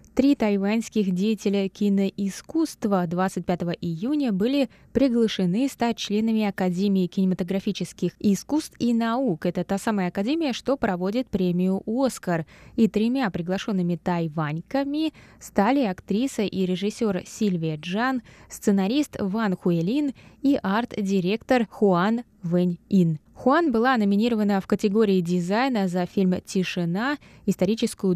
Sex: female